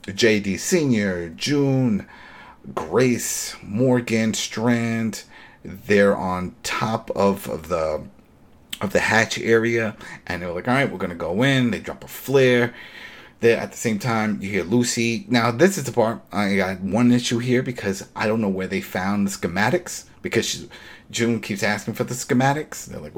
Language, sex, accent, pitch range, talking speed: English, male, American, 95-120 Hz, 175 wpm